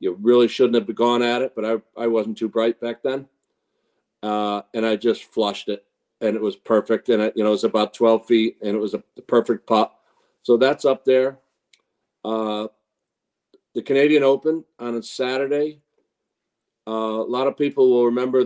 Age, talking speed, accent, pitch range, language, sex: 50-69, 190 wpm, American, 110-135 Hz, English, male